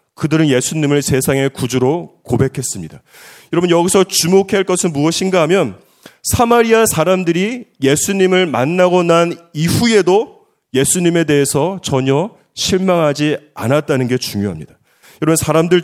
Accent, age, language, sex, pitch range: native, 30-49, Korean, male, 140-180 Hz